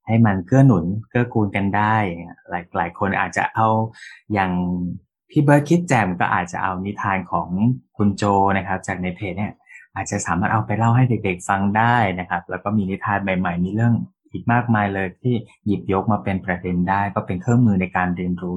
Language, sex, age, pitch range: Thai, male, 20-39, 95-110 Hz